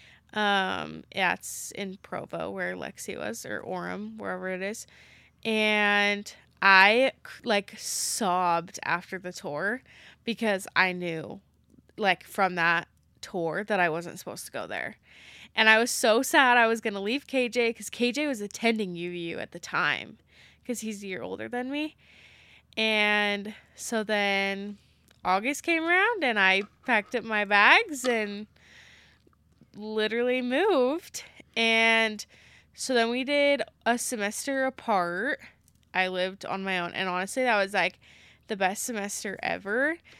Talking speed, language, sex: 145 wpm, English, female